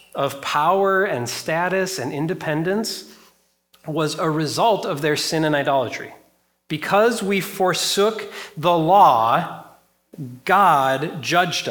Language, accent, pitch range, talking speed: English, American, 130-180 Hz, 110 wpm